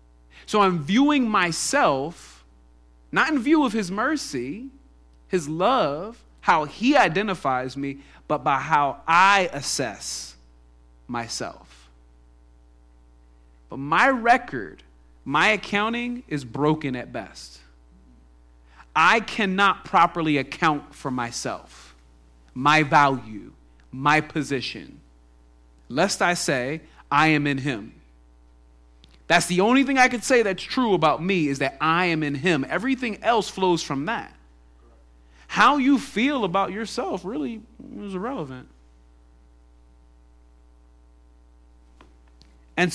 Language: English